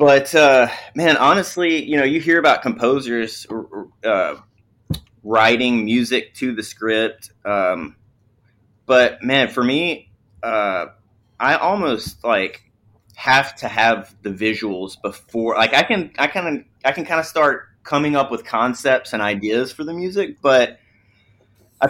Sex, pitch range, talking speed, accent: male, 105-130 Hz, 145 wpm, American